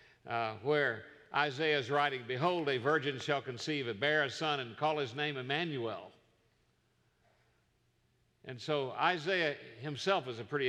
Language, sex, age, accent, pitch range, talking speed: English, male, 50-69, American, 120-170 Hz, 140 wpm